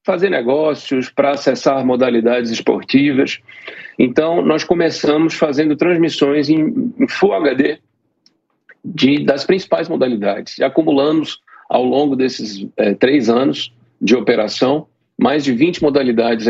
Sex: male